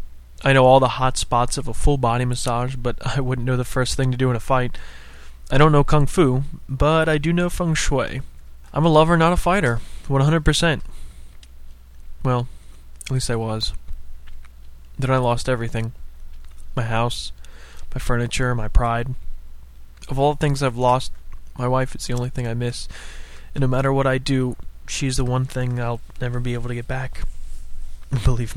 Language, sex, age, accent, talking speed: English, male, 20-39, American, 185 wpm